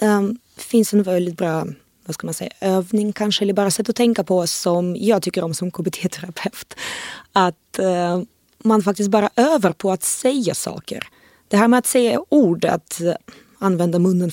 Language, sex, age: English, female, 20-39